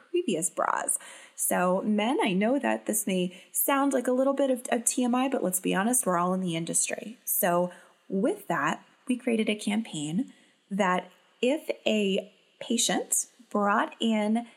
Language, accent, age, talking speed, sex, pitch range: English, American, 20-39, 160 wpm, female, 180-235 Hz